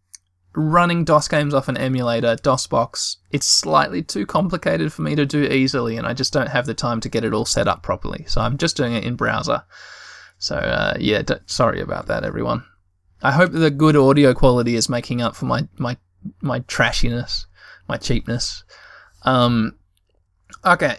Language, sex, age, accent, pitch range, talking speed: English, male, 20-39, Australian, 110-145 Hz, 180 wpm